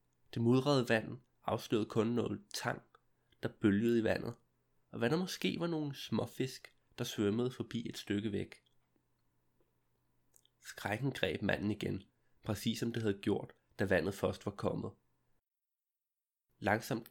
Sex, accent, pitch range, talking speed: male, native, 105-130 Hz, 135 wpm